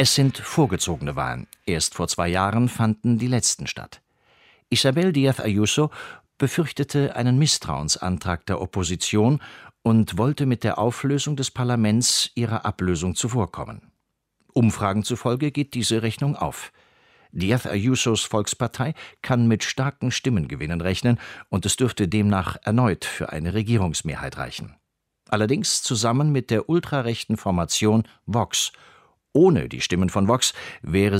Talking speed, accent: 125 wpm, German